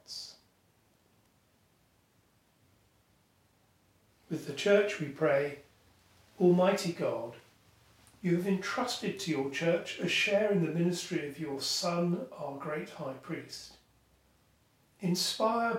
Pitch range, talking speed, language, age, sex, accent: 135-185 Hz, 100 wpm, English, 40-59, male, British